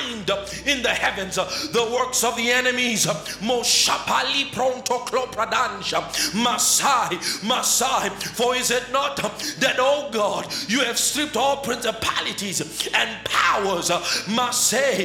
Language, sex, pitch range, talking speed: English, male, 215-250 Hz, 90 wpm